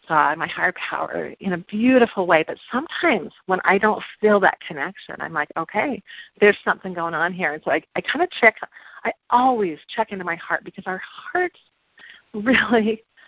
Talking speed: 185 wpm